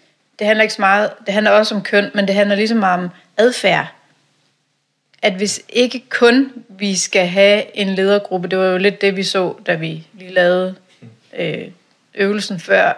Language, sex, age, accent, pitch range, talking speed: Danish, female, 30-49, native, 180-210 Hz, 180 wpm